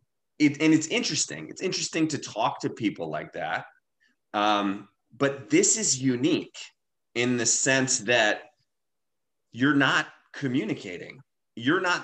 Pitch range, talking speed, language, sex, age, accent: 100-140 Hz, 125 wpm, English, male, 30-49, American